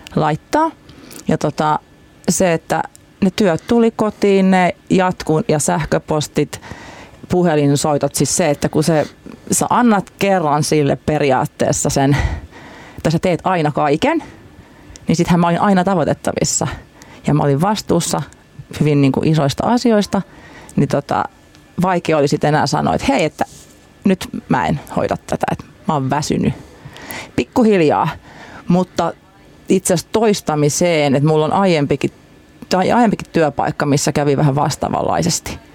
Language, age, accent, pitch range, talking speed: Finnish, 30-49, native, 150-195 Hz, 135 wpm